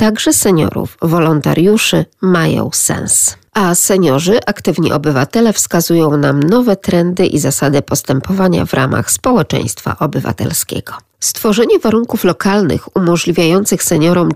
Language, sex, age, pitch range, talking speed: Polish, female, 40-59, 160-210 Hz, 105 wpm